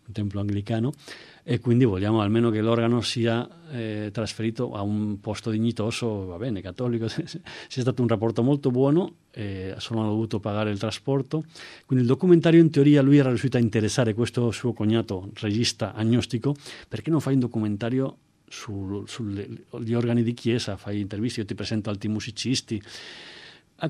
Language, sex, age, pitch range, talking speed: Italian, male, 40-59, 110-135 Hz, 160 wpm